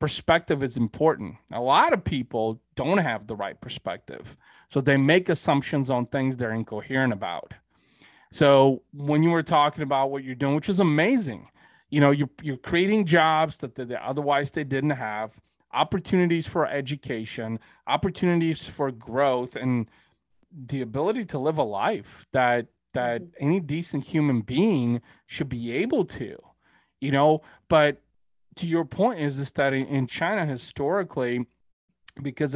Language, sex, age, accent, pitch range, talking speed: English, male, 30-49, American, 125-155 Hz, 150 wpm